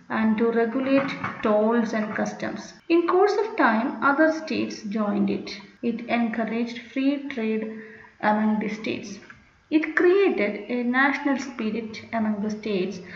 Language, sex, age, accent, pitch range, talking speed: Malayalam, female, 30-49, native, 215-275 Hz, 130 wpm